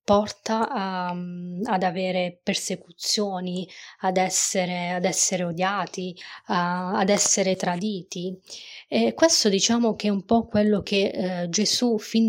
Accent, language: native, Italian